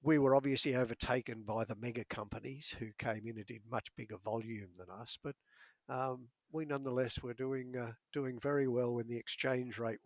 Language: English